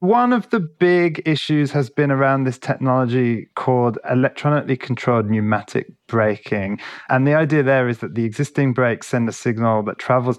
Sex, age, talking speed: male, 30-49, 165 wpm